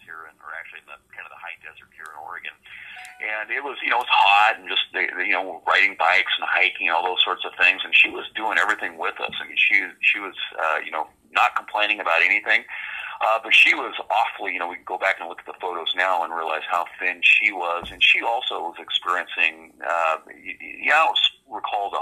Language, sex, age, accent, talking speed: English, male, 40-59, American, 240 wpm